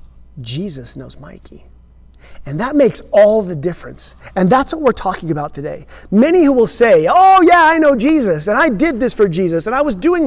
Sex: male